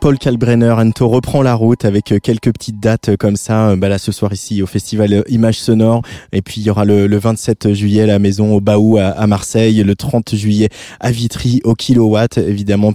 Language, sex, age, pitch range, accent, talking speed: French, male, 20-39, 105-130 Hz, French, 210 wpm